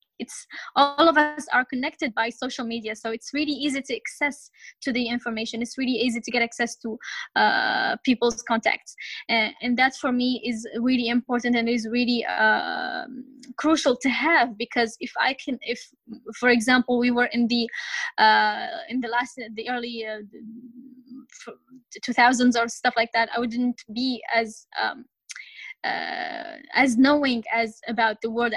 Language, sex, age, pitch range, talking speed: English, female, 10-29, 235-270 Hz, 165 wpm